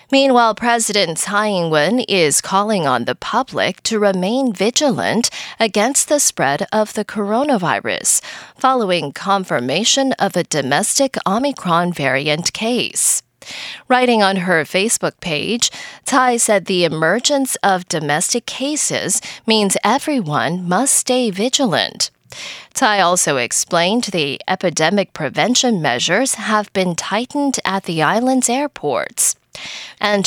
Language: English